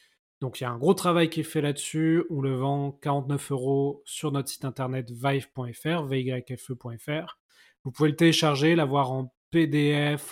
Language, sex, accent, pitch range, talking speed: French, male, French, 130-150 Hz, 170 wpm